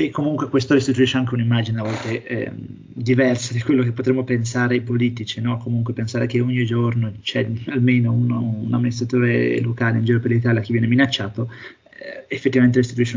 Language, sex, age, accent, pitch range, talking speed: Italian, male, 30-49, native, 120-130 Hz, 180 wpm